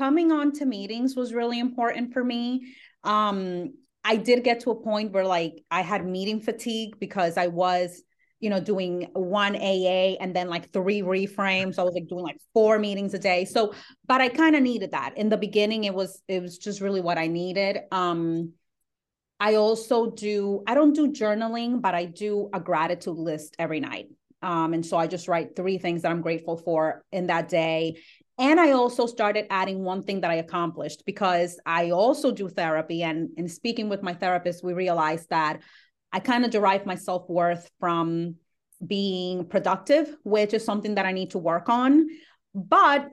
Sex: female